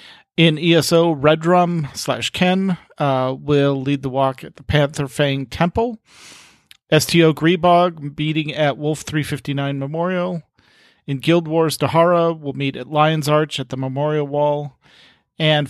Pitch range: 135-160 Hz